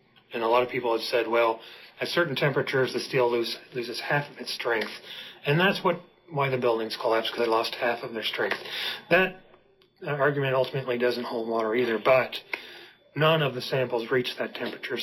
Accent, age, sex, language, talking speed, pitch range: American, 30-49, male, English, 195 wpm, 120-155 Hz